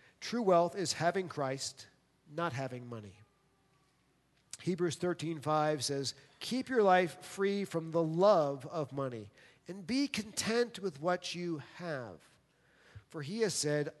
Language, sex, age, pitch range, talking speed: English, male, 40-59, 145-200 Hz, 135 wpm